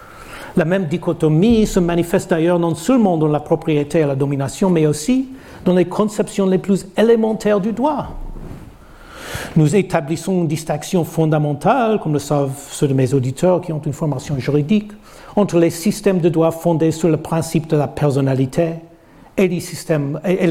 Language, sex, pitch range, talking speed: French, male, 150-185 Hz, 160 wpm